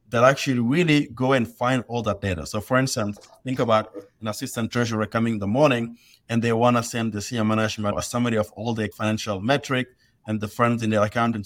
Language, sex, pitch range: English, male, 110-130 Hz